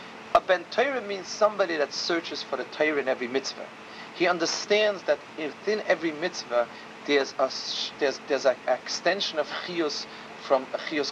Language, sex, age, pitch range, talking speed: English, male, 40-59, 140-215 Hz, 155 wpm